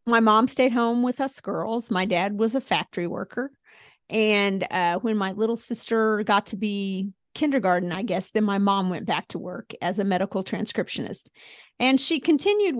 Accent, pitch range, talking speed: American, 195-230 Hz, 185 wpm